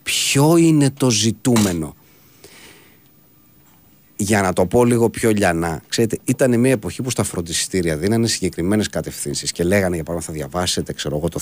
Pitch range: 100-145 Hz